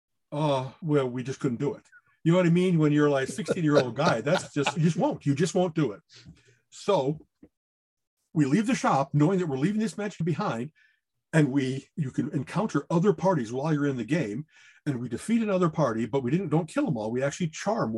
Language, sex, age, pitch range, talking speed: English, male, 50-69, 140-210 Hz, 235 wpm